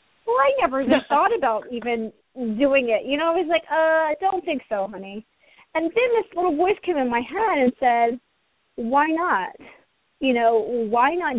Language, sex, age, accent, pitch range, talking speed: English, female, 30-49, American, 225-285 Hz, 195 wpm